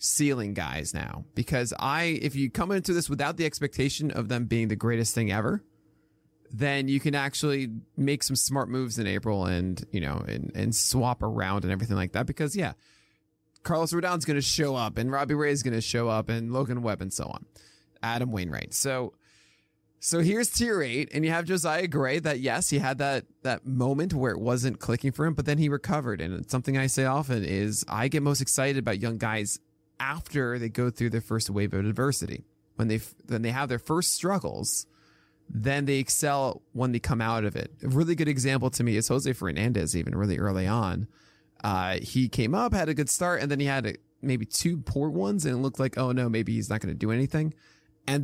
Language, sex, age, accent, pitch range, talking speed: English, male, 20-39, American, 110-145 Hz, 215 wpm